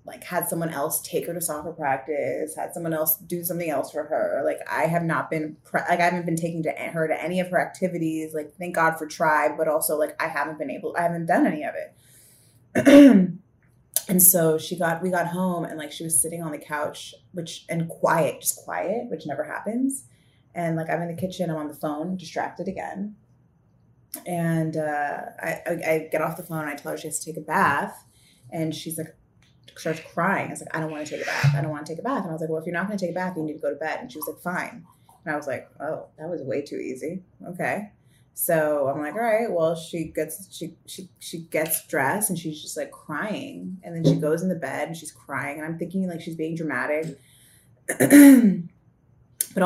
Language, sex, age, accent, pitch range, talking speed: English, female, 20-39, American, 155-180 Hz, 240 wpm